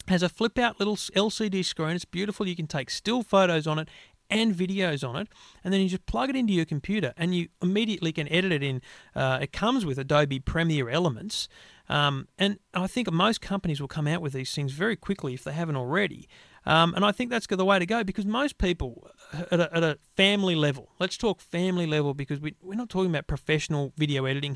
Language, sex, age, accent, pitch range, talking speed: English, male, 40-59, Australian, 155-200 Hz, 225 wpm